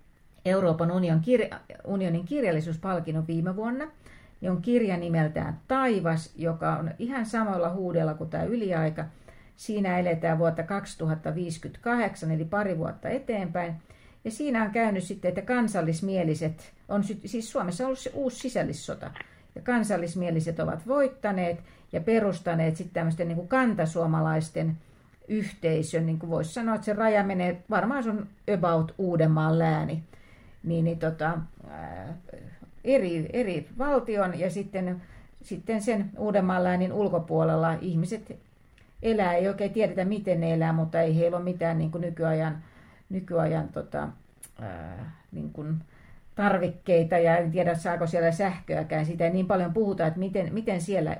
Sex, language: female, Finnish